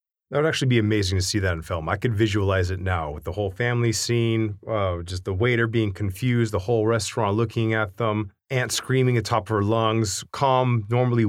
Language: English